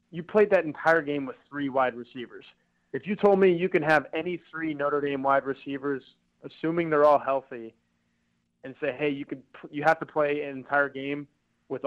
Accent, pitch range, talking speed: American, 130-185 Hz, 195 wpm